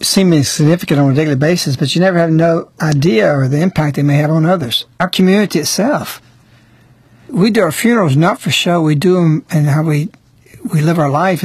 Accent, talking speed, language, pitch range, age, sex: American, 205 wpm, English, 125-180 Hz, 60-79, male